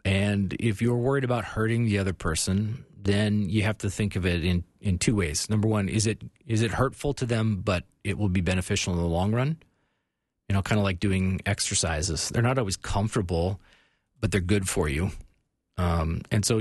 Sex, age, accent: male, 40-59, American